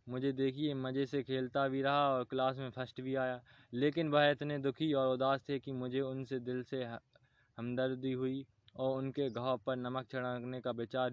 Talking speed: 190 wpm